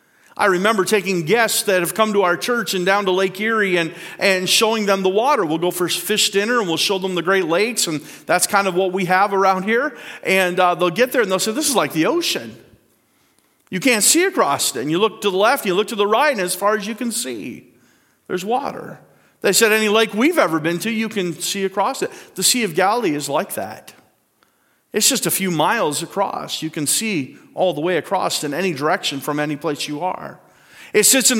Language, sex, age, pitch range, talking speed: English, male, 40-59, 175-220 Hz, 235 wpm